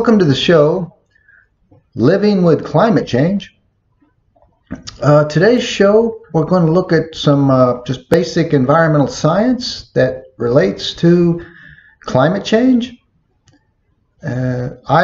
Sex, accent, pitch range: male, American, 115-165 Hz